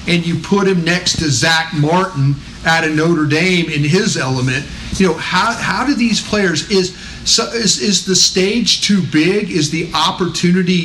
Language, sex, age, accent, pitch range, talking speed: English, male, 40-59, American, 155-190 Hz, 170 wpm